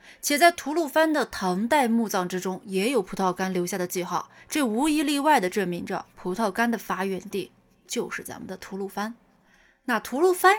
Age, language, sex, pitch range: 20-39, Chinese, female, 190-280 Hz